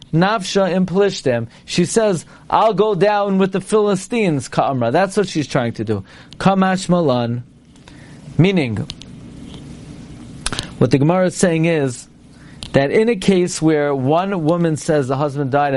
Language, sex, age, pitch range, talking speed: English, male, 40-59, 140-210 Hz, 145 wpm